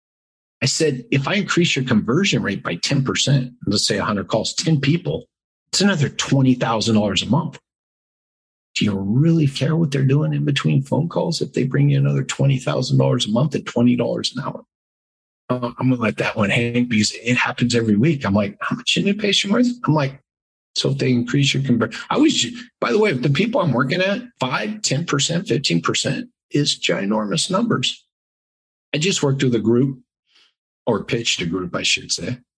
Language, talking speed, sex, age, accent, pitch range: English, 190 wpm, male, 50-69, American, 115-150 Hz